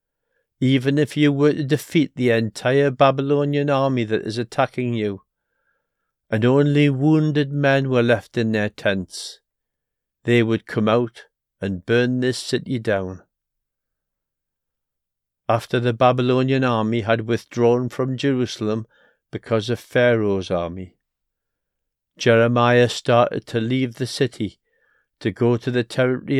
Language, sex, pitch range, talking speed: English, male, 100-125 Hz, 125 wpm